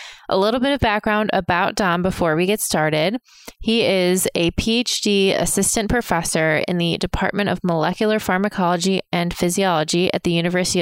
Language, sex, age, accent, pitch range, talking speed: English, female, 20-39, American, 170-200 Hz, 155 wpm